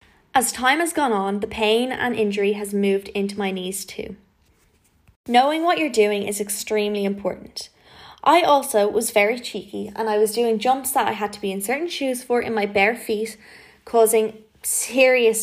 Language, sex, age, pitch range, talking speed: English, female, 20-39, 205-255 Hz, 185 wpm